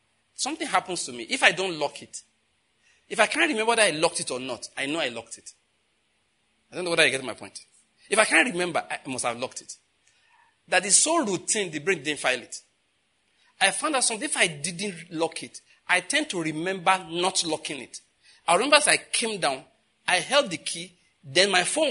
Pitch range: 145-190 Hz